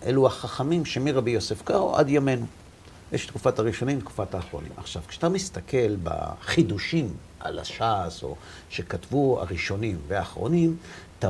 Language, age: Hebrew, 50-69